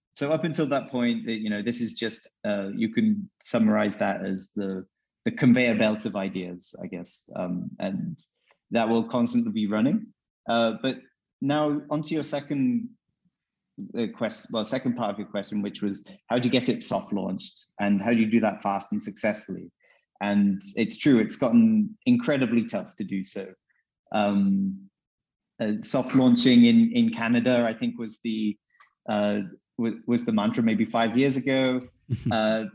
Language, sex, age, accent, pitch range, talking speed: English, male, 30-49, British, 110-150 Hz, 165 wpm